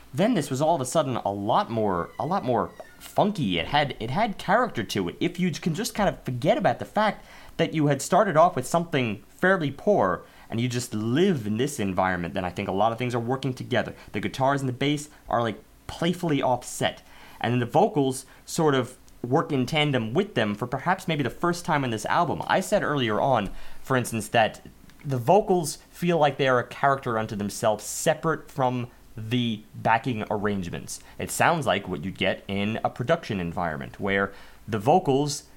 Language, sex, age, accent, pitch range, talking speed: English, male, 30-49, American, 110-150 Hz, 205 wpm